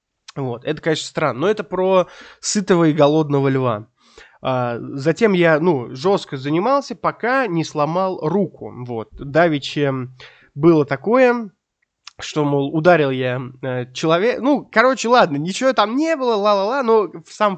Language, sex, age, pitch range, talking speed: Russian, male, 20-39, 140-200 Hz, 135 wpm